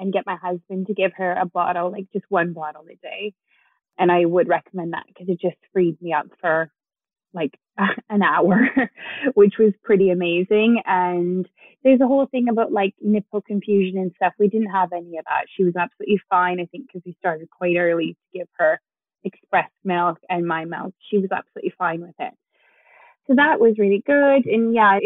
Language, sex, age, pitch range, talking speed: English, female, 20-39, 180-235 Hz, 200 wpm